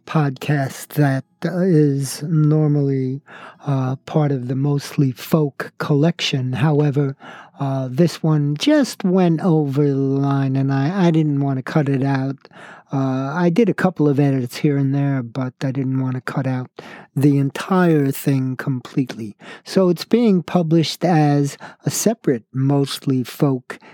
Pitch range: 135-165 Hz